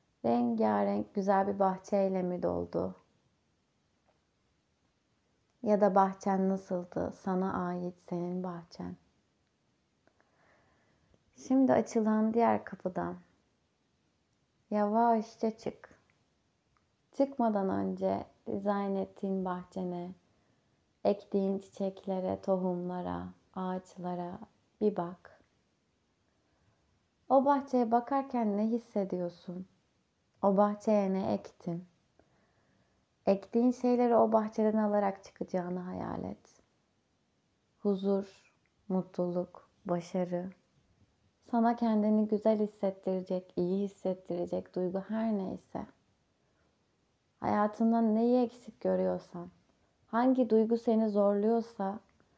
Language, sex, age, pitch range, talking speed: Turkish, female, 30-49, 175-215 Hz, 80 wpm